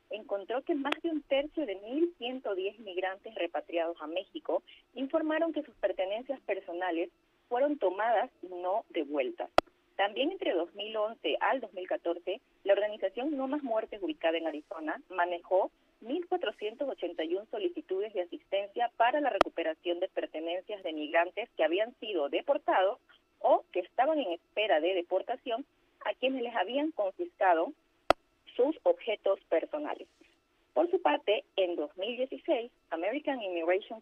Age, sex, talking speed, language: 40-59, female, 130 wpm, Spanish